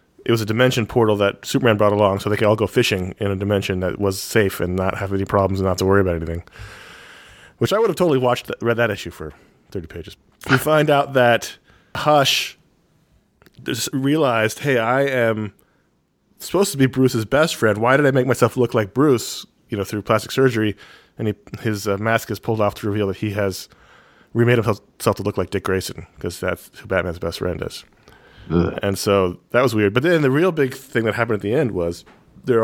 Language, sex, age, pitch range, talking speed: English, male, 30-49, 100-120 Hz, 220 wpm